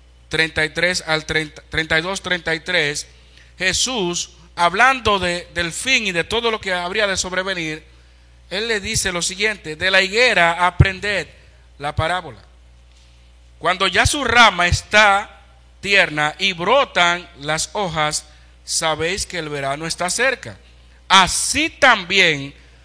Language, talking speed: Spanish, 115 wpm